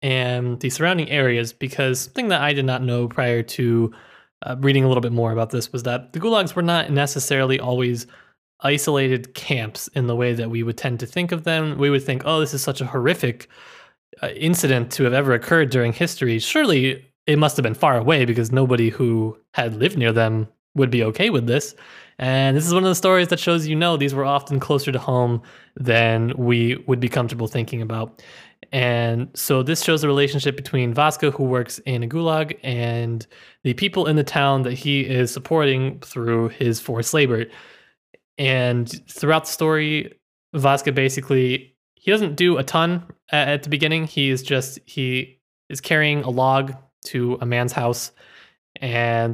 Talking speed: 190 wpm